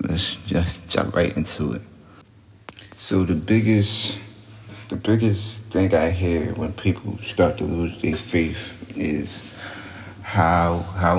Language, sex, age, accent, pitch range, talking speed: English, male, 30-49, American, 85-100 Hz, 130 wpm